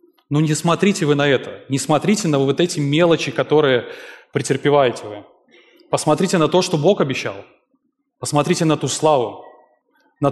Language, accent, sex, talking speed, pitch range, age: Russian, native, male, 155 wpm, 125-160 Hz, 20-39